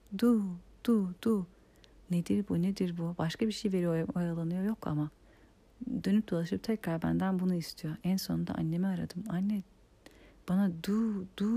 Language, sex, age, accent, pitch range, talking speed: Turkish, female, 40-59, native, 160-195 Hz, 145 wpm